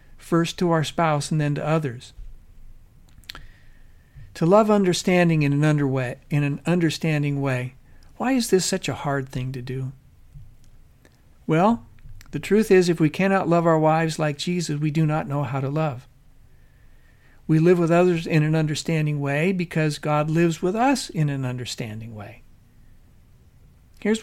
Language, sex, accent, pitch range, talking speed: English, male, American, 130-180 Hz, 155 wpm